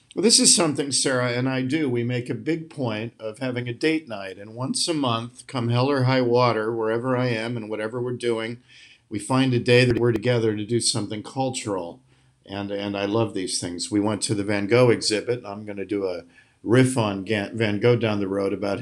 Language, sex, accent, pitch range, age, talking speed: English, male, American, 105-125 Hz, 50-69, 225 wpm